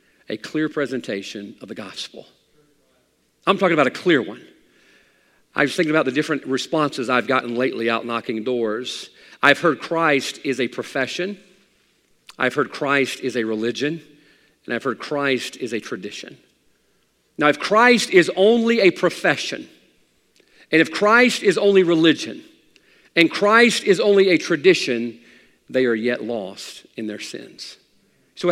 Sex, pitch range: male, 140-205 Hz